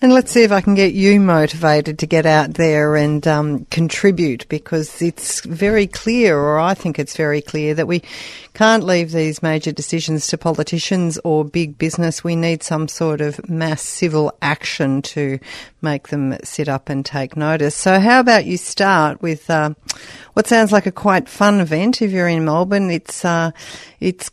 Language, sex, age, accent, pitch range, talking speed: English, female, 40-59, Australian, 155-190 Hz, 175 wpm